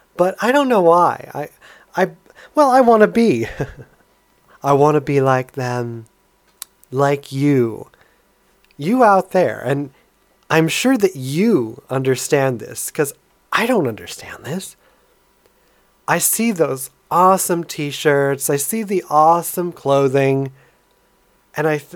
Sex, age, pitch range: male, 30-49, 135-180 Hz